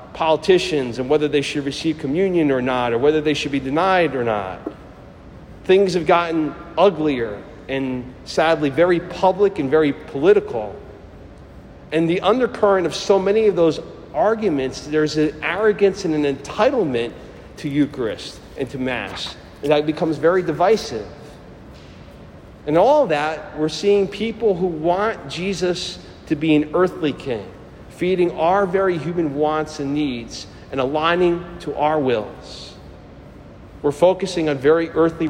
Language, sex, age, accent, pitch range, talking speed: English, male, 40-59, American, 135-175 Hz, 145 wpm